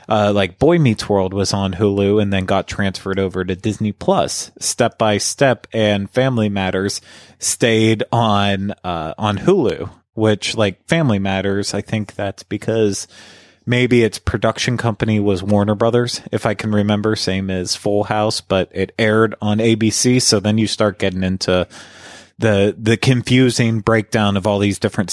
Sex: male